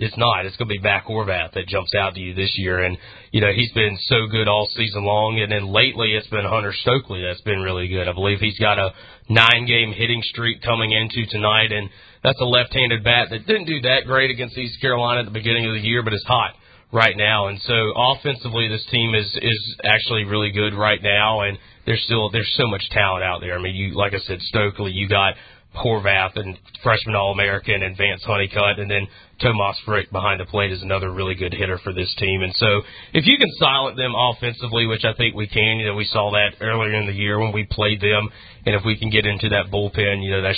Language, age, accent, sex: English, 30-49, American, male